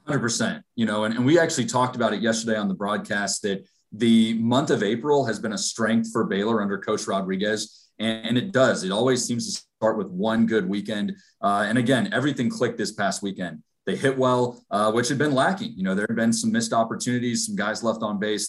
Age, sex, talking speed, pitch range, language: 30-49, male, 225 wpm, 105-125 Hz, English